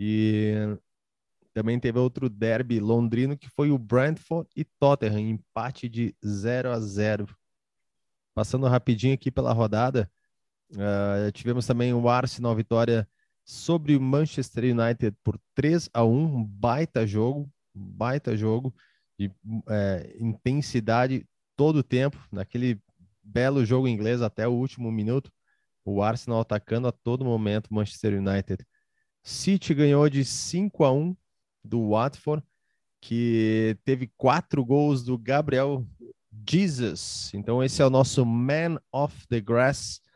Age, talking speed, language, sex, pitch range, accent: 20-39, 130 wpm, Portuguese, male, 110-135 Hz, Brazilian